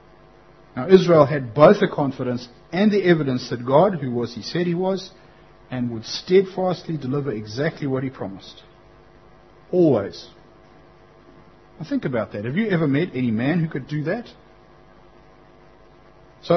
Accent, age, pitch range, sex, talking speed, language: Australian, 60-79, 130-170 Hz, male, 150 wpm, English